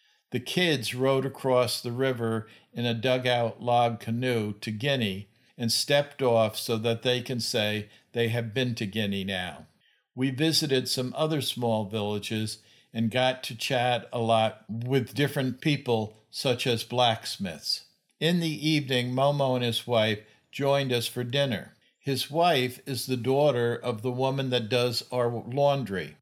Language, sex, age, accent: English, male, 50-69, American